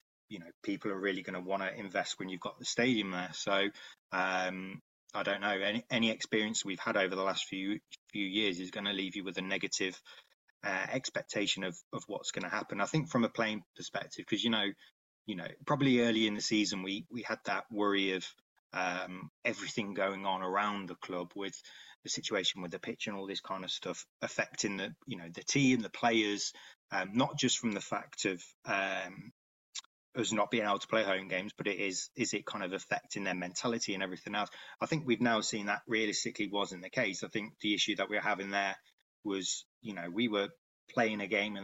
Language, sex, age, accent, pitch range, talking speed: English, male, 20-39, British, 95-110 Hz, 220 wpm